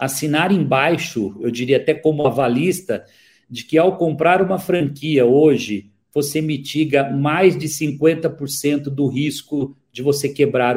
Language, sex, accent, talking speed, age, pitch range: Portuguese, male, Brazilian, 135 wpm, 50-69, 140-180 Hz